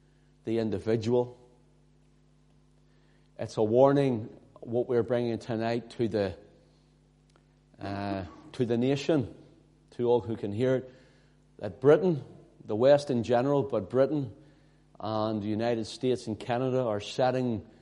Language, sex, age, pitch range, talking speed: English, male, 40-59, 110-135 Hz, 130 wpm